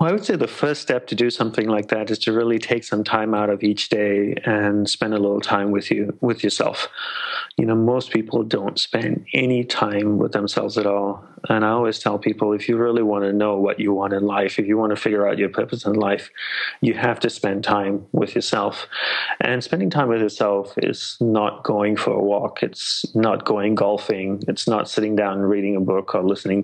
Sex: male